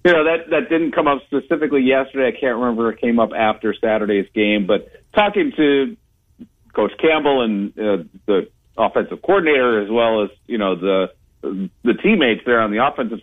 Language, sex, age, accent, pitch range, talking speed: English, male, 40-59, American, 105-125 Hz, 185 wpm